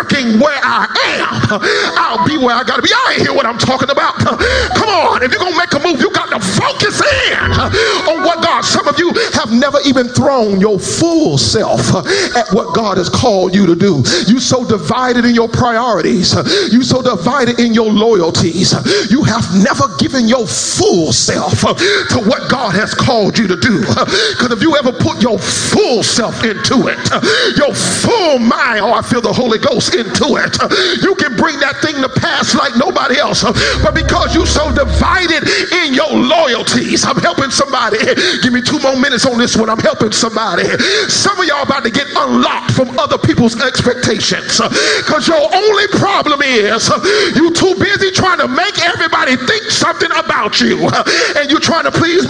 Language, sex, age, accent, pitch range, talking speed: English, male, 40-59, American, 235-340 Hz, 185 wpm